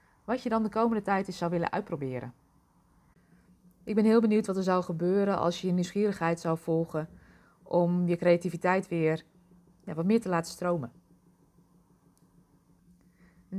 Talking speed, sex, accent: 145 wpm, female, Dutch